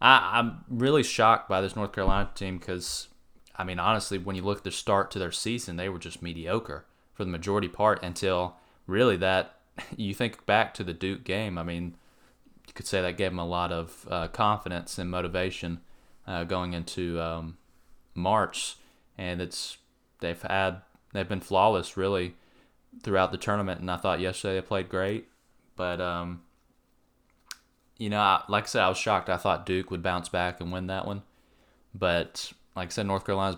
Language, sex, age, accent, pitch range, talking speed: English, male, 20-39, American, 85-100 Hz, 185 wpm